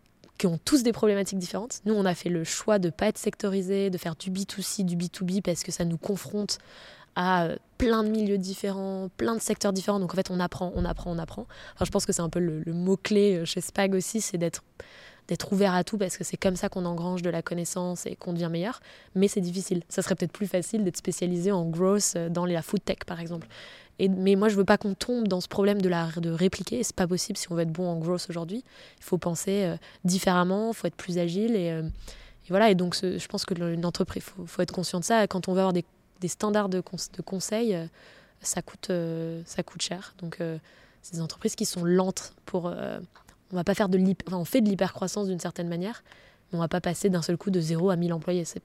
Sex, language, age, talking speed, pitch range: female, French, 20-39, 250 wpm, 175-200 Hz